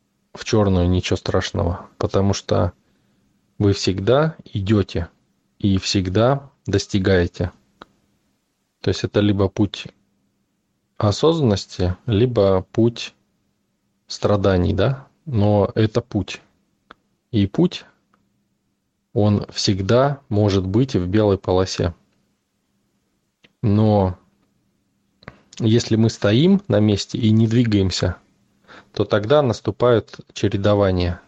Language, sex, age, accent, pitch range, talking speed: Russian, male, 20-39, native, 95-115 Hz, 90 wpm